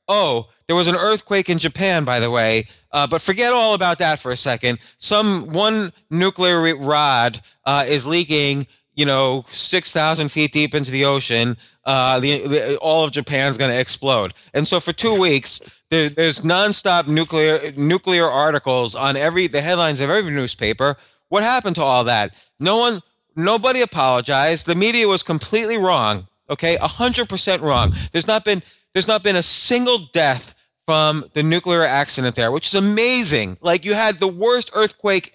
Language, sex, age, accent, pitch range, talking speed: English, male, 20-39, American, 140-190 Hz, 175 wpm